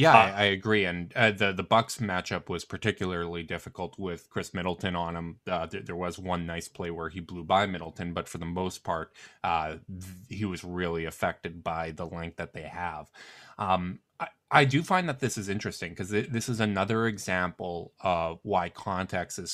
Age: 20-39